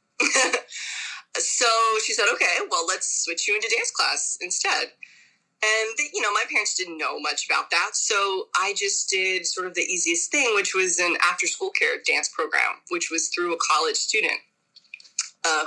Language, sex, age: English, female, 20-39